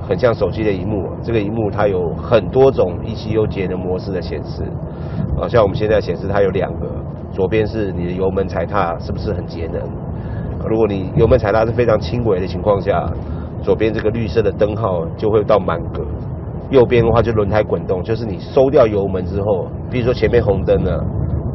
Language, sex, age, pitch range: Chinese, male, 40-59, 90-115 Hz